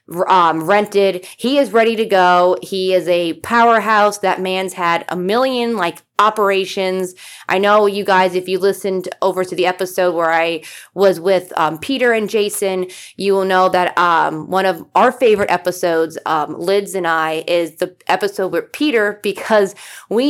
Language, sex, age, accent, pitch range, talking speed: English, female, 20-39, American, 175-210 Hz, 170 wpm